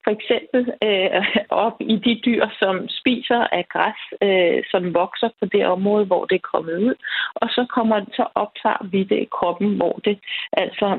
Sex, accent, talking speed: female, native, 175 wpm